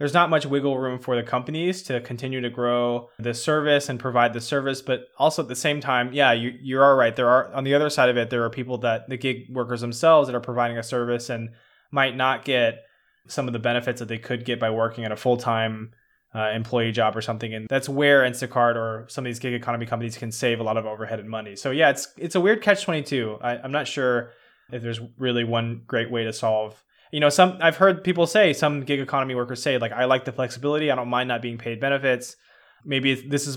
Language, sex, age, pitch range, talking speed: English, male, 20-39, 120-140 Hz, 245 wpm